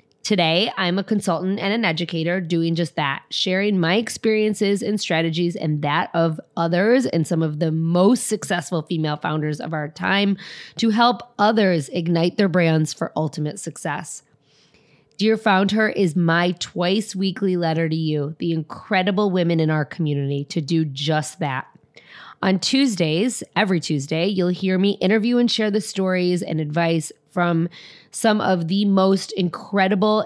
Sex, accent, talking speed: female, American, 155 wpm